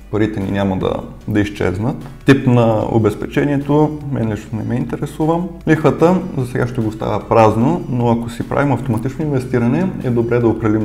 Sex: male